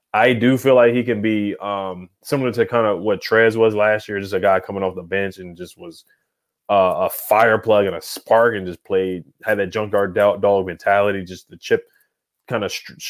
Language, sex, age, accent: English, male, 20-39, American